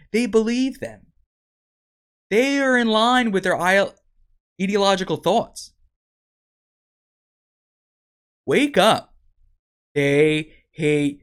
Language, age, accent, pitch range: English, 20-39, American, 135-210 Hz